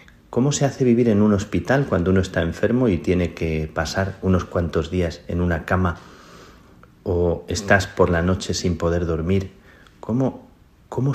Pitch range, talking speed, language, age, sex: 80-95 Hz, 160 wpm, Spanish, 40-59, male